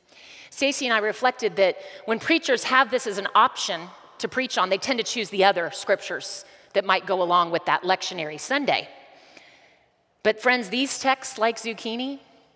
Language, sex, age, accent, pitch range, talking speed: English, female, 30-49, American, 165-240 Hz, 170 wpm